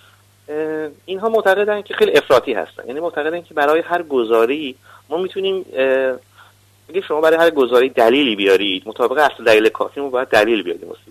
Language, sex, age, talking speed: Persian, male, 30-49, 160 wpm